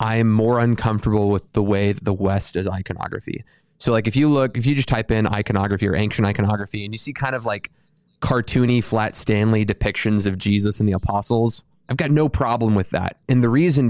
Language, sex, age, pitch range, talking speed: English, male, 20-39, 105-120 Hz, 210 wpm